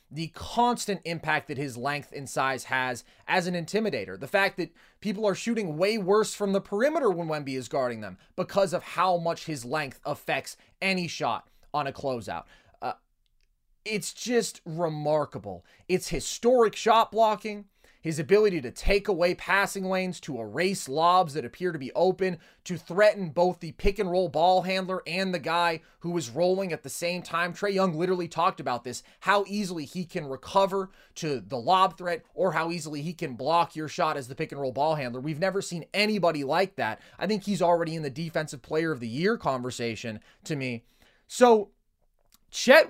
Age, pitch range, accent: 30-49, 150-195 Hz, American